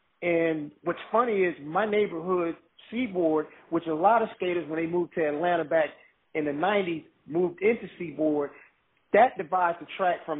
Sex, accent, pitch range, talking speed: male, American, 155-195 Hz, 165 wpm